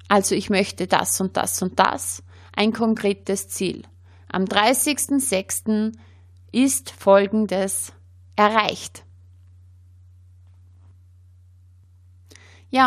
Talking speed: 80 wpm